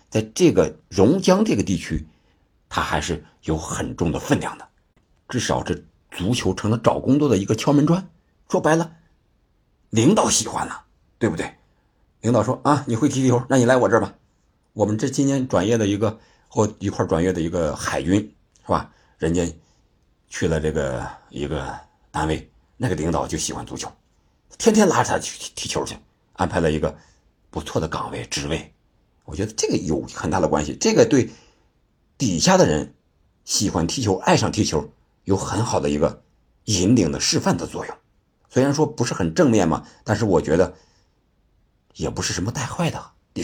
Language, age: Chinese, 50-69